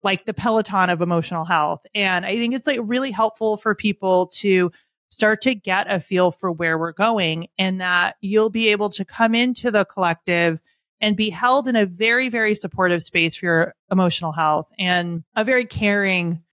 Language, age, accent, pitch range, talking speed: English, 30-49, American, 180-220 Hz, 190 wpm